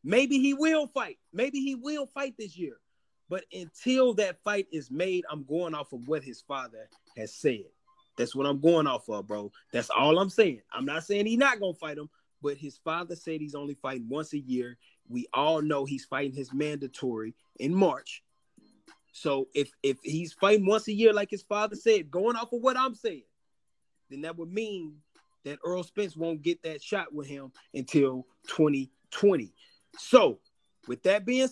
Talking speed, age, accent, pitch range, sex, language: 190 wpm, 30-49, American, 155-255 Hz, male, English